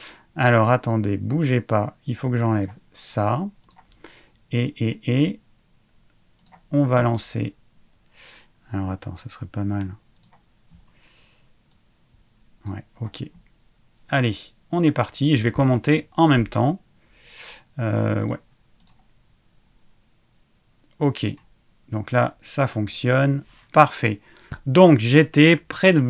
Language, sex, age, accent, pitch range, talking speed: French, male, 30-49, French, 110-140 Hz, 105 wpm